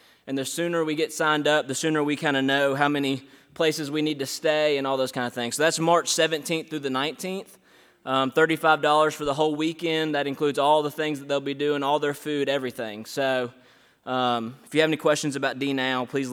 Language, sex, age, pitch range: English, male, 20-39, 135-160 Hz